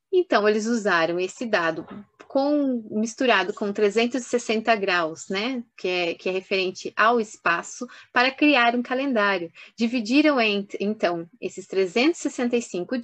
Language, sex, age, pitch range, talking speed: Portuguese, female, 20-39, 200-245 Hz, 110 wpm